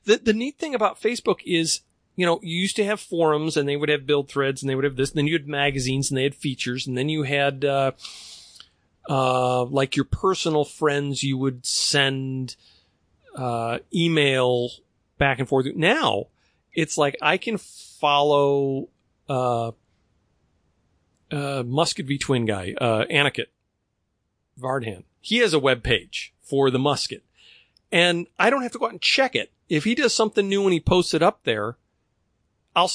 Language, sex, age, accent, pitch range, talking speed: English, male, 40-59, American, 120-160 Hz, 175 wpm